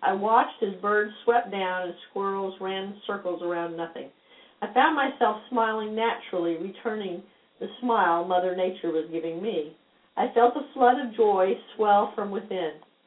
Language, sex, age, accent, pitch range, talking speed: English, female, 50-69, American, 180-230 Hz, 160 wpm